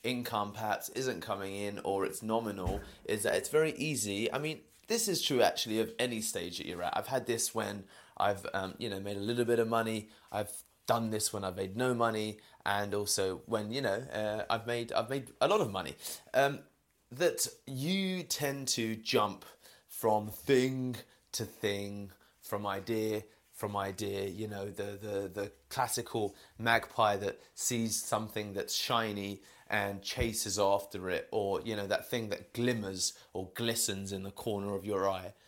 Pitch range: 100-120 Hz